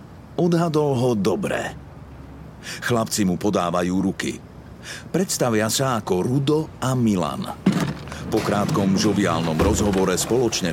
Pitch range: 95-120 Hz